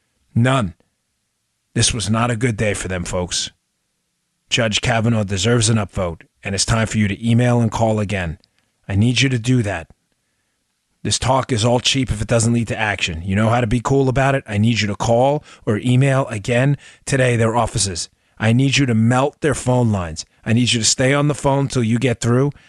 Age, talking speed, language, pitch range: 30-49, 215 wpm, English, 100-130 Hz